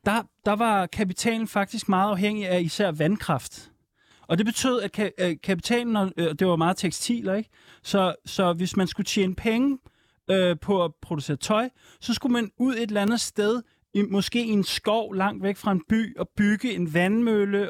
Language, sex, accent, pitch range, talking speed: Danish, male, native, 180-220 Hz, 175 wpm